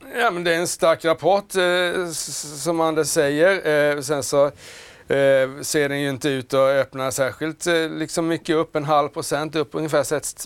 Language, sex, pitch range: Swedish, male, 130-160 Hz